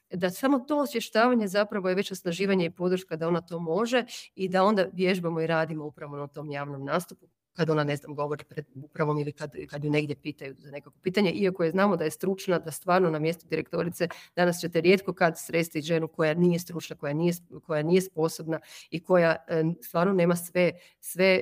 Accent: native